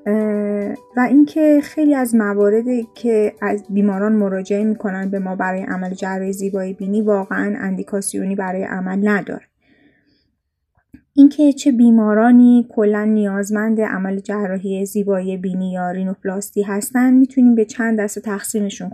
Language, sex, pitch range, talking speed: Persian, female, 200-230 Hz, 125 wpm